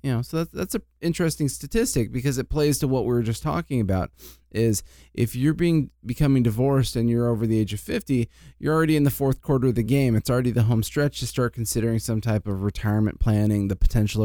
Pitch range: 105-135 Hz